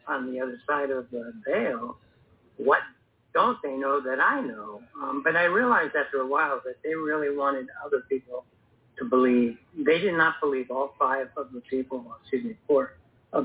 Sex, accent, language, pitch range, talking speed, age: male, American, English, 125-140 Hz, 185 wpm, 60-79